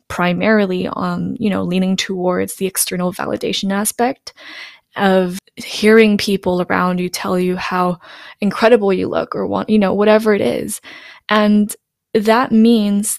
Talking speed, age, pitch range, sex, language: 140 wpm, 20-39, 185-215 Hz, female, English